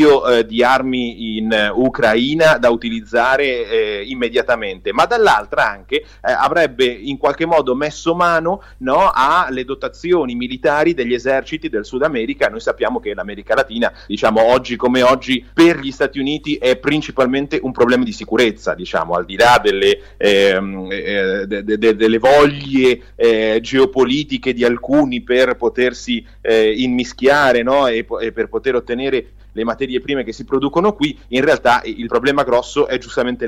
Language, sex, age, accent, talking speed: Italian, male, 30-49, native, 155 wpm